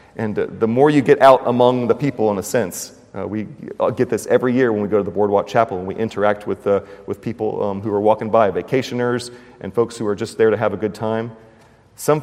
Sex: male